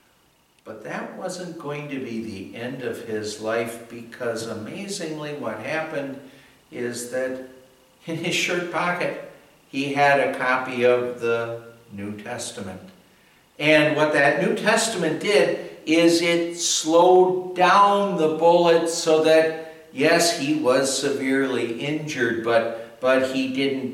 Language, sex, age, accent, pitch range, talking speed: English, male, 60-79, American, 115-150 Hz, 130 wpm